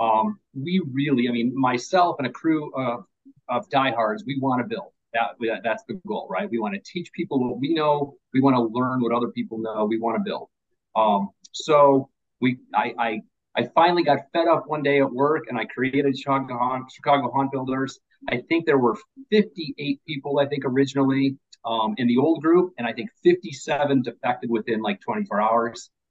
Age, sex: 40-59, male